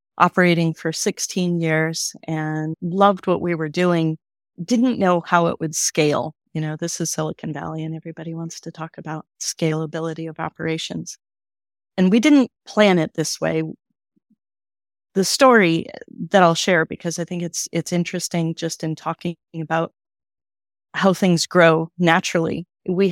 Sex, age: female, 30-49